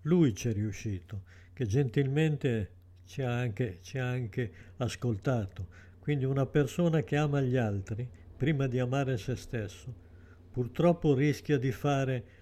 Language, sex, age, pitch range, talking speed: Italian, male, 60-79, 110-145 Hz, 140 wpm